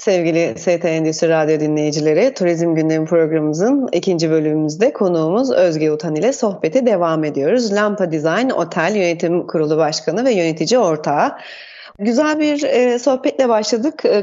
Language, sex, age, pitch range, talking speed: Turkish, female, 30-49, 180-245 Hz, 135 wpm